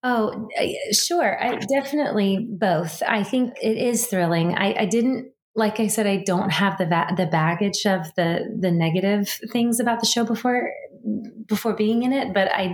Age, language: 30-49, English